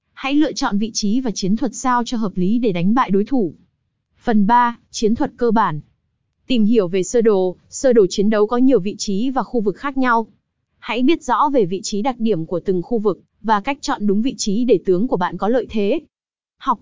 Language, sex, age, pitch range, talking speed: Vietnamese, female, 20-39, 200-250 Hz, 240 wpm